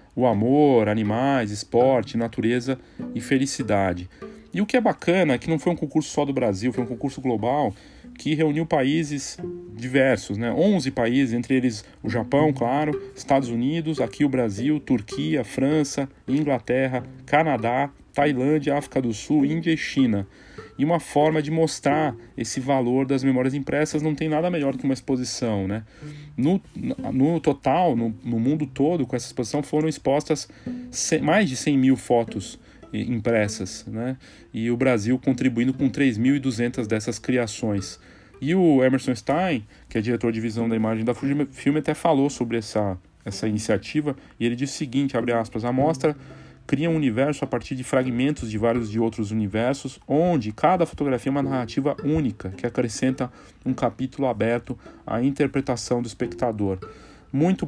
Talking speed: 165 wpm